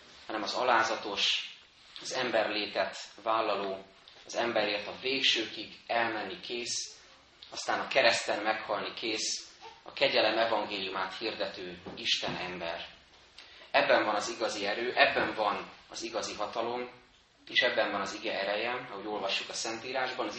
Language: Hungarian